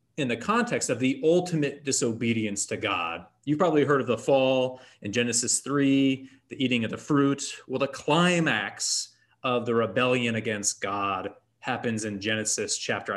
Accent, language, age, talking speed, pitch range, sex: American, English, 30-49, 160 wpm, 115-155 Hz, male